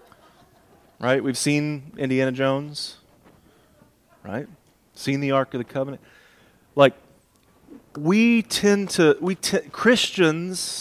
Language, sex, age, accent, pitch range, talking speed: English, male, 30-49, American, 120-155 Hz, 105 wpm